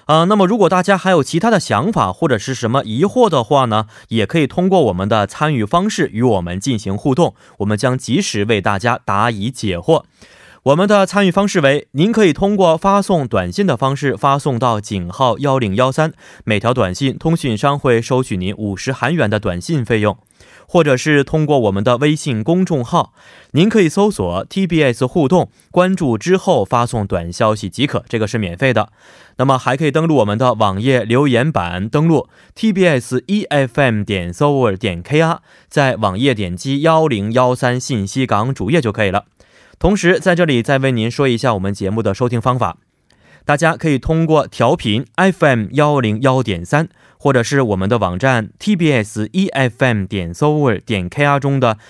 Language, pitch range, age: Korean, 110-160 Hz, 20-39